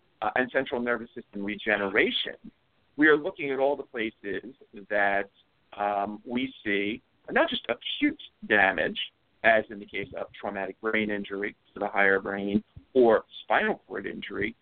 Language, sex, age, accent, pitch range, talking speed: English, male, 50-69, American, 100-120 Hz, 150 wpm